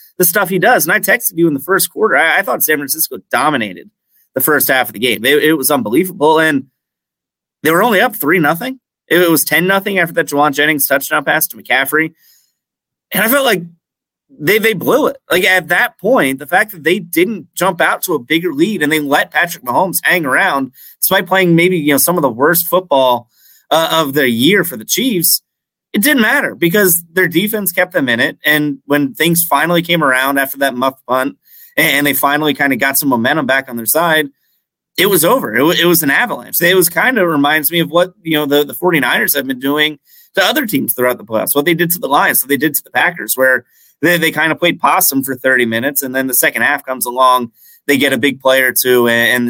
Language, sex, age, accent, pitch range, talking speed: English, male, 30-49, American, 135-175 Hz, 235 wpm